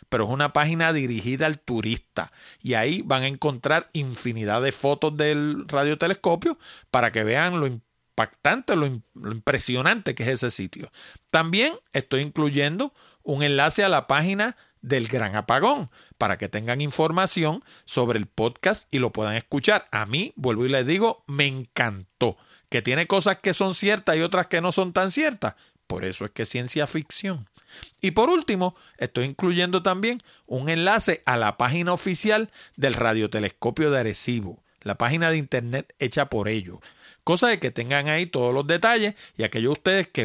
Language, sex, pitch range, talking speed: Spanish, male, 120-185 Hz, 170 wpm